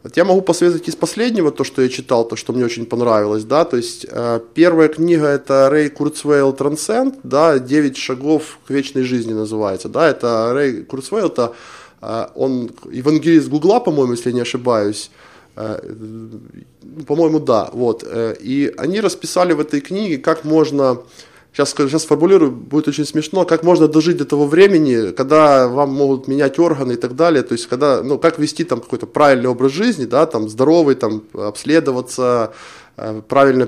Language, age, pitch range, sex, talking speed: Ukrainian, 20-39, 125-165 Hz, male, 170 wpm